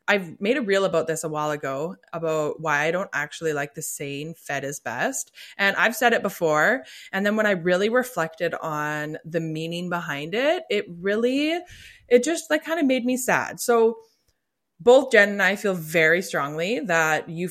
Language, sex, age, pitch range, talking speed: English, female, 20-39, 160-220 Hz, 190 wpm